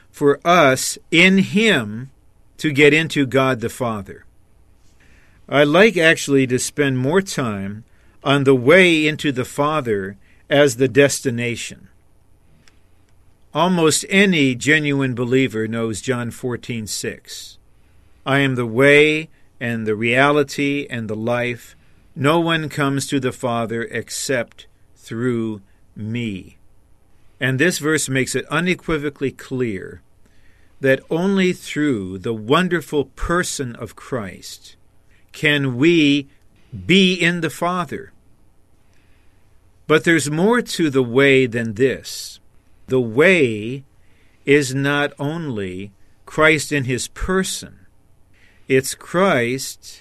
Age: 50-69